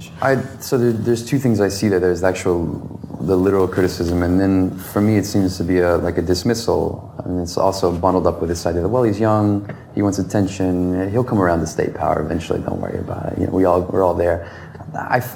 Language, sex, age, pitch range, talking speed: English, male, 30-49, 85-100 Hz, 240 wpm